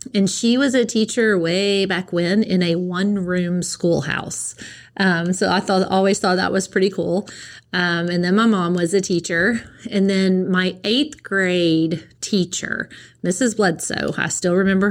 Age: 30-49